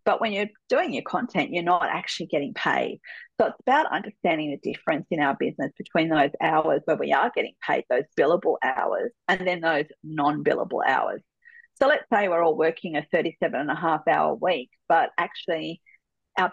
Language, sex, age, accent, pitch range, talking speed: English, female, 40-59, Australian, 165-235 Hz, 190 wpm